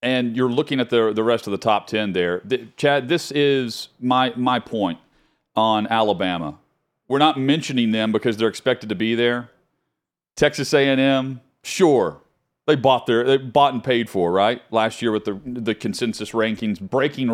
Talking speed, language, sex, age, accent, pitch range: 175 wpm, English, male, 40-59, American, 115-140 Hz